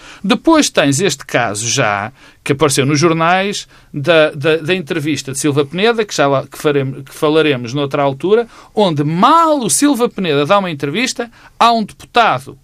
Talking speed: 150 wpm